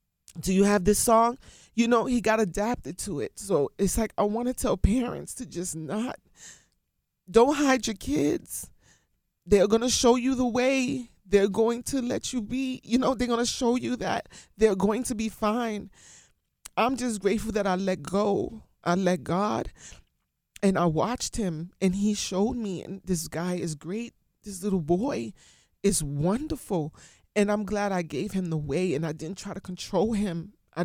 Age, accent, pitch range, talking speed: 30-49, American, 170-215 Hz, 185 wpm